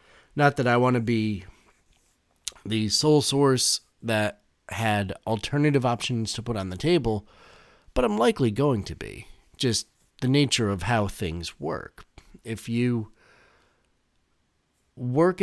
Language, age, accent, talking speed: English, 40-59, American, 130 wpm